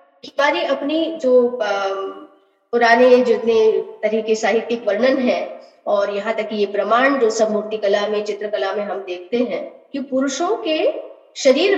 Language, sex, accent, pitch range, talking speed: Hindi, female, native, 235-325 Hz, 155 wpm